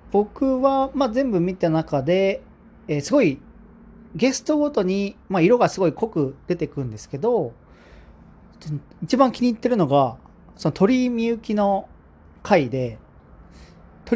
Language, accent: Japanese, native